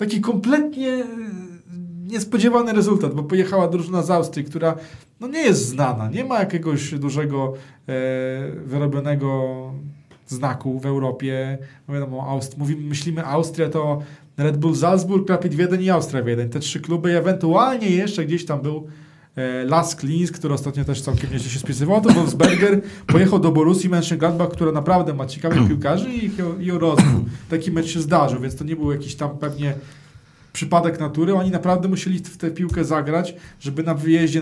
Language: Polish